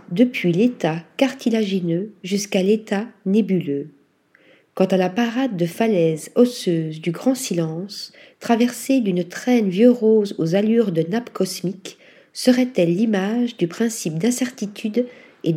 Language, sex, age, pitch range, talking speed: French, female, 40-59, 180-245 Hz, 125 wpm